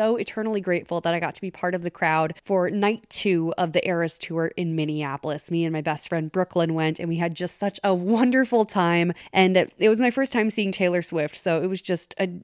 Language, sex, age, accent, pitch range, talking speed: English, female, 20-39, American, 175-230 Hz, 240 wpm